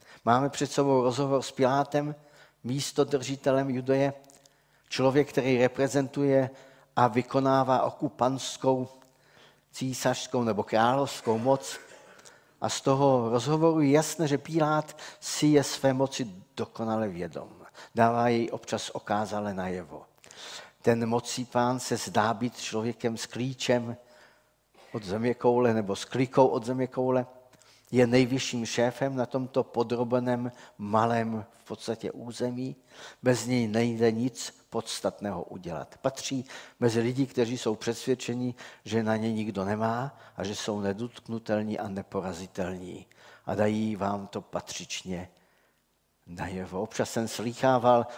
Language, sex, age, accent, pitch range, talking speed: Czech, male, 50-69, native, 115-135 Hz, 120 wpm